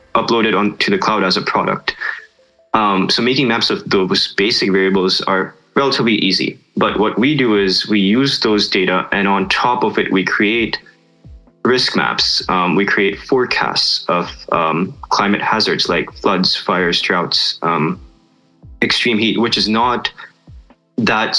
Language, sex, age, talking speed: English, male, 20-39, 155 wpm